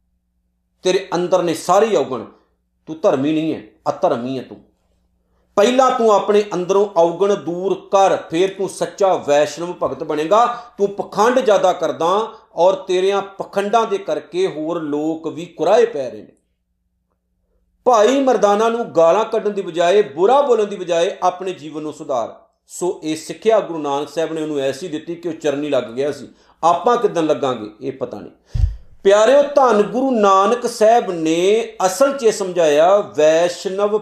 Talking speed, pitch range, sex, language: 160 wpm, 155-205 Hz, male, Punjabi